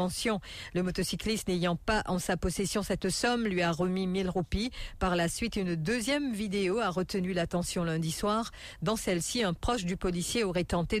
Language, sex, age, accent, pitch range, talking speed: English, female, 50-69, French, 175-210 Hz, 180 wpm